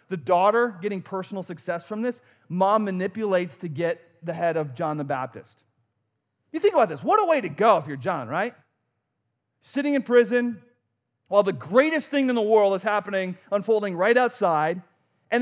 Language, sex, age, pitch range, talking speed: English, male, 30-49, 120-205 Hz, 180 wpm